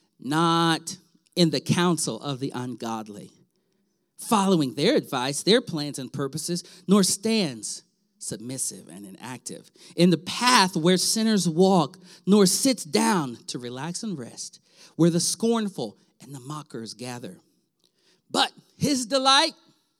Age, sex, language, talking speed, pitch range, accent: 40-59, male, English, 125 wpm, 155-225 Hz, American